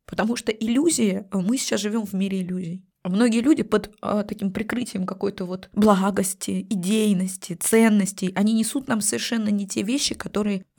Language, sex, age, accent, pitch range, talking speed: Russian, female, 20-39, native, 180-215 Hz, 150 wpm